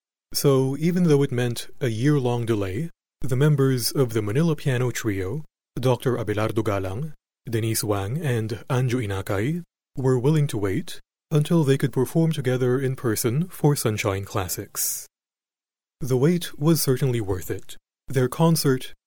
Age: 30-49